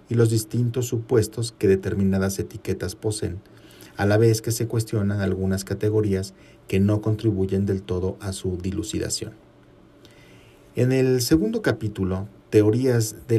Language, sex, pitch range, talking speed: Spanish, male, 95-115 Hz, 135 wpm